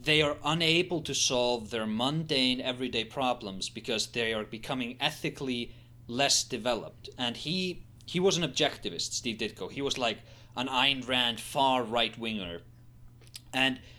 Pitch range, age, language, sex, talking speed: 115-145 Hz, 30-49, English, male, 145 wpm